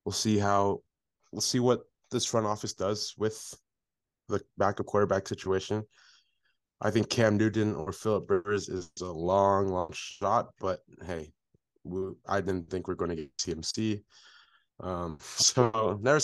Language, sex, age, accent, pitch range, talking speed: English, male, 20-39, American, 90-110 Hz, 155 wpm